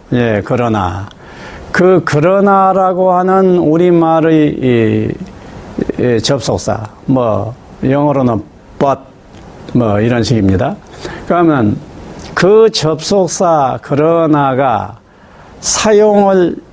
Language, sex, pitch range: Korean, male, 120-185 Hz